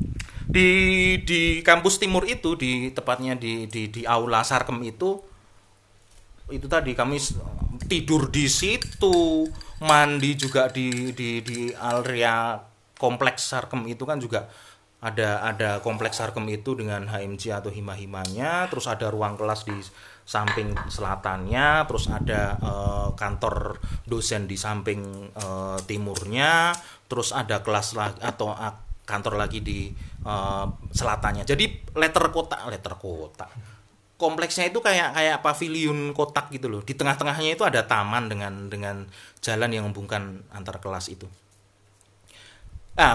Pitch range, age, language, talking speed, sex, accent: 100-130 Hz, 30-49, Indonesian, 130 wpm, male, native